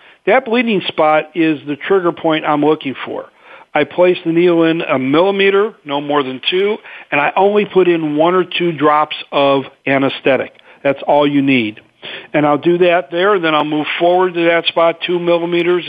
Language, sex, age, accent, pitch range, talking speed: English, male, 50-69, American, 145-170 Hz, 190 wpm